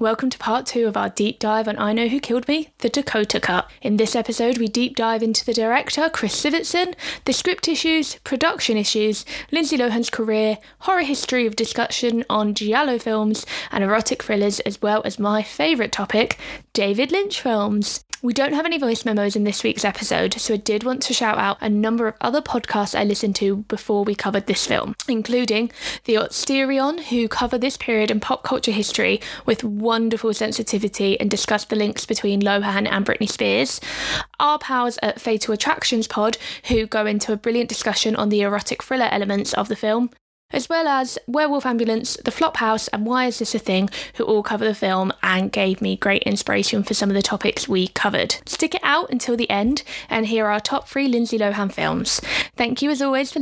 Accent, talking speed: British, 200 wpm